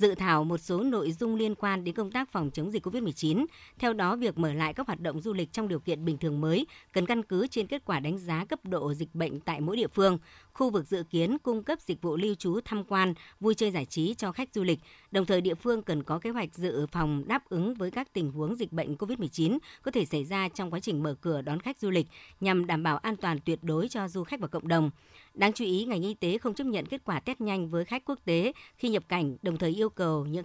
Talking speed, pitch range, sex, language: 270 wpm, 165-220 Hz, male, Vietnamese